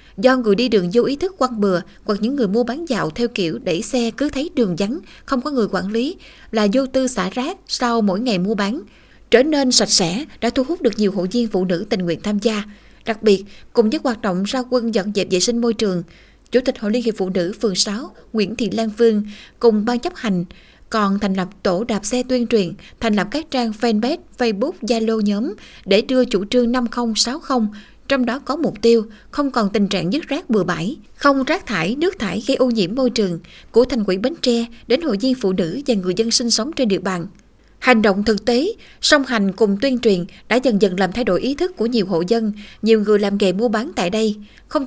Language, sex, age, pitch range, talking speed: Vietnamese, female, 20-39, 200-250 Hz, 240 wpm